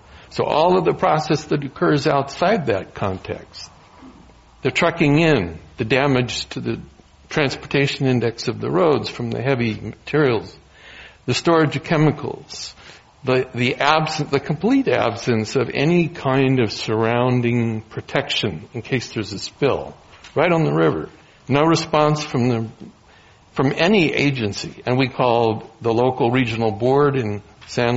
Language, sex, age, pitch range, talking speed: English, male, 60-79, 120-155 Hz, 145 wpm